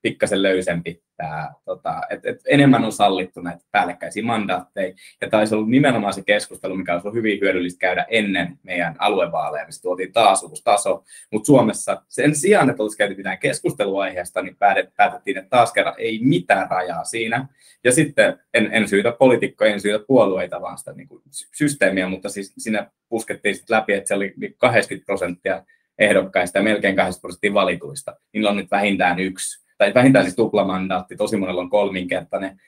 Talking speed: 165 wpm